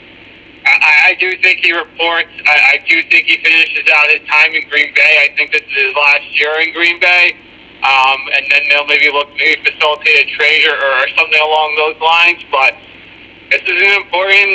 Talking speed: 200 wpm